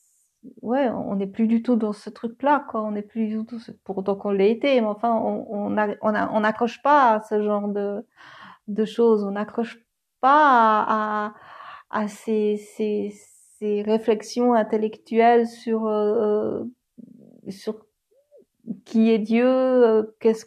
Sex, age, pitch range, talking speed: female, 50-69, 210-235 Hz, 150 wpm